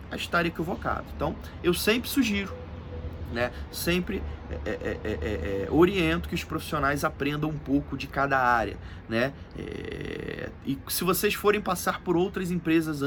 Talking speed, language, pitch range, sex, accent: 155 wpm, Portuguese, 125-195 Hz, male, Brazilian